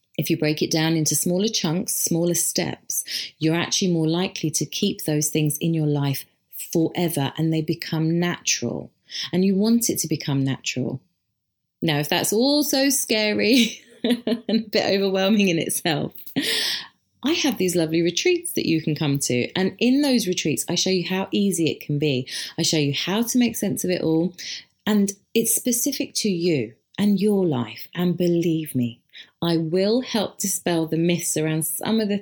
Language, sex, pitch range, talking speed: English, female, 155-215 Hz, 185 wpm